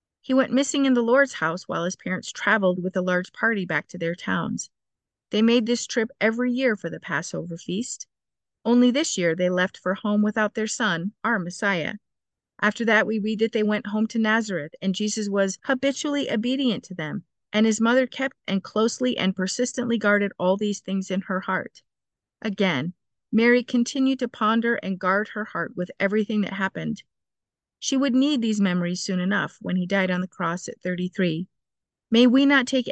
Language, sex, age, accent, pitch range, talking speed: English, female, 40-59, American, 185-240 Hz, 190 wpm